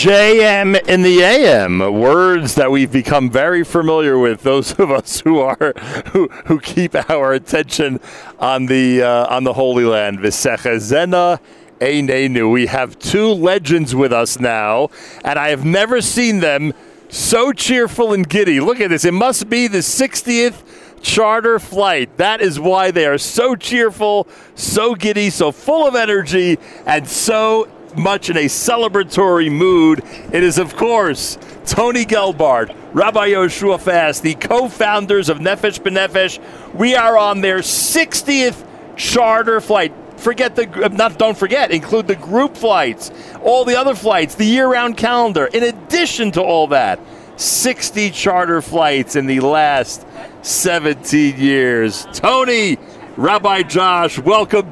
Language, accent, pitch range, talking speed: English, American, 150-225 Hz, 145 wpm